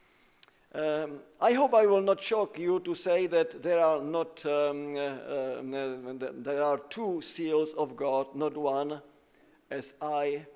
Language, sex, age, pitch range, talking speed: English, male, 50-69, 150-185 Hz, 155 wpm